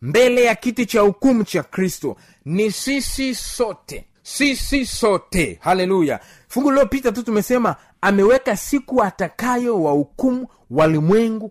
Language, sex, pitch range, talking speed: Swahili, male, 190-260 Hz, 120 wpm